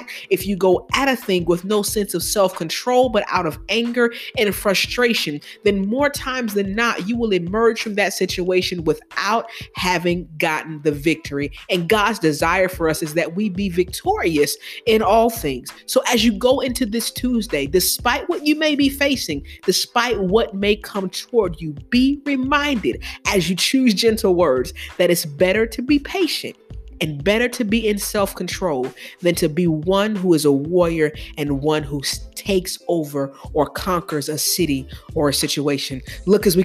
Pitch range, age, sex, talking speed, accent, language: 150-215 Hz, 40-59, female, 175 wpm, American, English